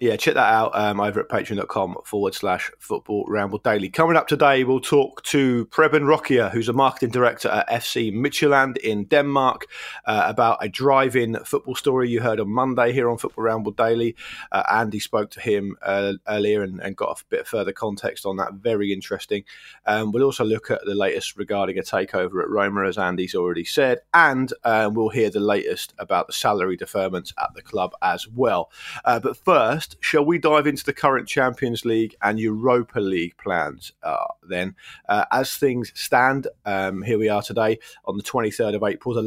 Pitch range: 110-140 Hz